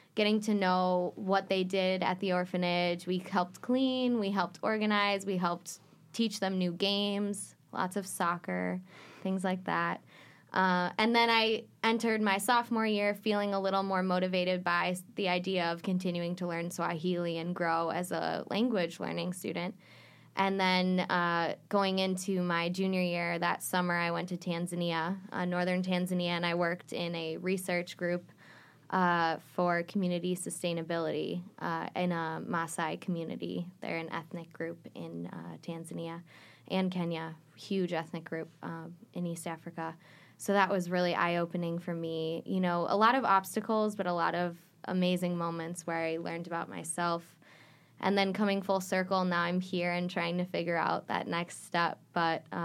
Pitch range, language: 170-190 Hz, English